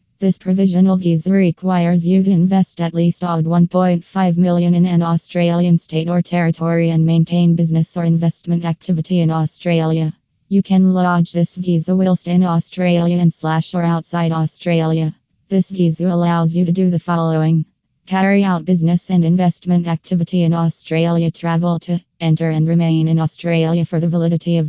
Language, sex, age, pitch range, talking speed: English, female, 20-39, 160-175 Hz, 160 wpm